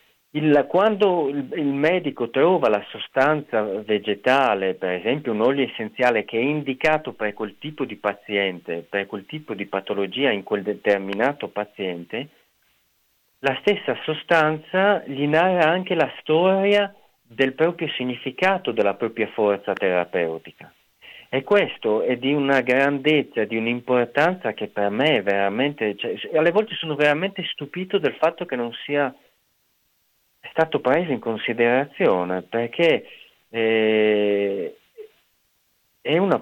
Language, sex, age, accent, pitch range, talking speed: Italian, male, 40-59, native, 105-165 Hz, 125 wpm